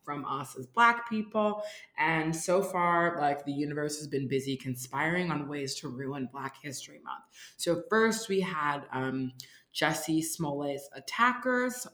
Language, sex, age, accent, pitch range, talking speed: English, female, 20-39, American, 140-180 Hz, 150 wpm